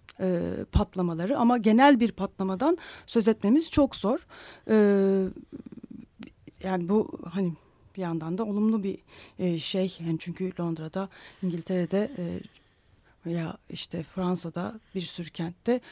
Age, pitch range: 30-49, 185-245 Hz